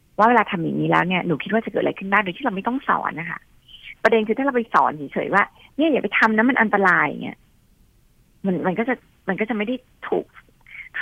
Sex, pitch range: female, 165-225 Hz